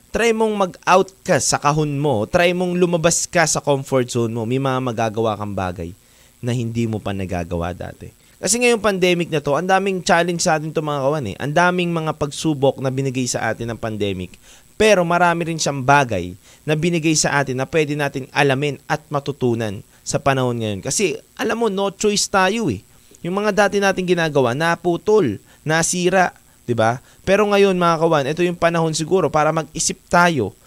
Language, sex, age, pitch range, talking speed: Filipino, male, 20-39, 120-180 Hz, 185 wpm